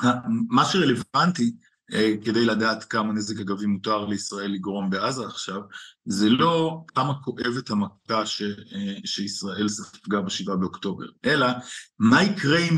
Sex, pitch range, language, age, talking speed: male, 105-160 Hz, Hebrew, 50-69, 115 wpm